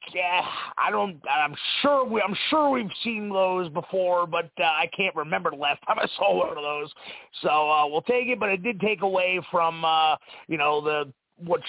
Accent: American